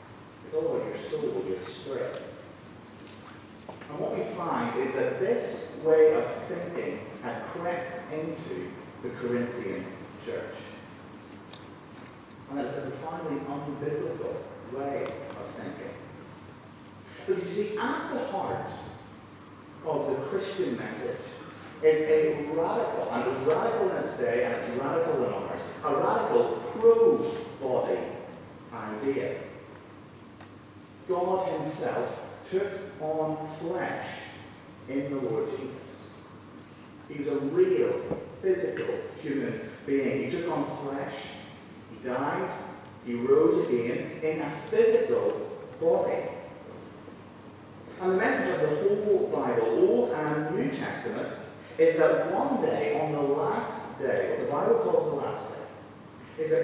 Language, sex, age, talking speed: English, male, 40-59, 120 wpm